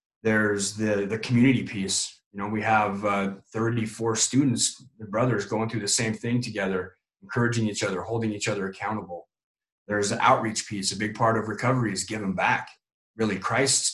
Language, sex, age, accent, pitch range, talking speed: English, male, 30-49, American, 105-130 Hz, 180 wpm